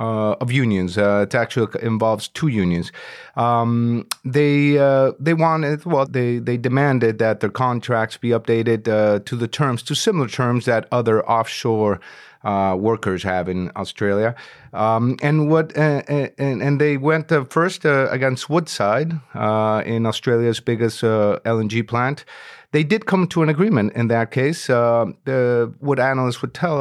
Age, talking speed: 30-49, 165 wpm